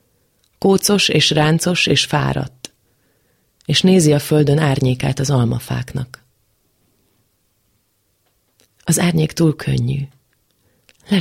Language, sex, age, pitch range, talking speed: Hungarian, female, 30-49, 125-160 Hz, 90 wpm